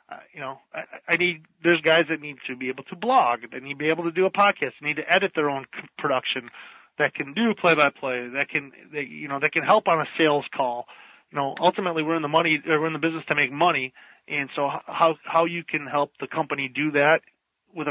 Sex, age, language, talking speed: male, 30-49, English, 250 wpm